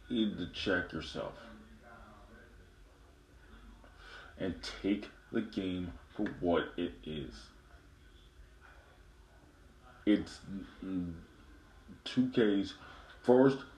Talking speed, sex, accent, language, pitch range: 65 wpm, male, American, English, 75-115 Hz